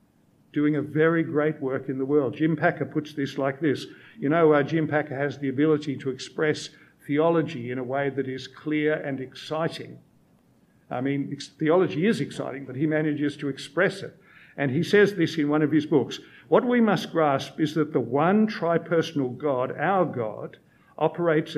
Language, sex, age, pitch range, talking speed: English, male, 50-69, 140-170 Hz, 185 wpm